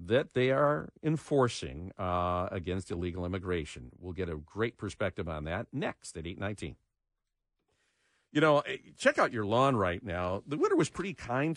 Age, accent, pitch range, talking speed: 50-69, American, 90-130 Hz, 160 wpm